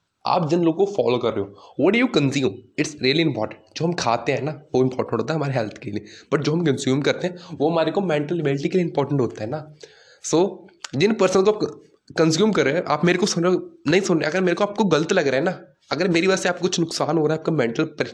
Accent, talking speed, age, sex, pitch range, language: native, 285 wpm, 20-39, male, 140-185 Hz, Hindi